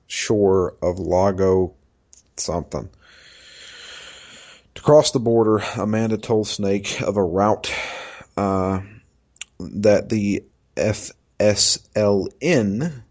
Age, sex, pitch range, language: 40-59, male, 95-110 Hz, English